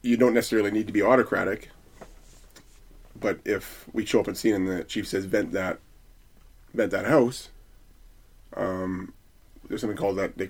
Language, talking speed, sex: English, 165 wpm, male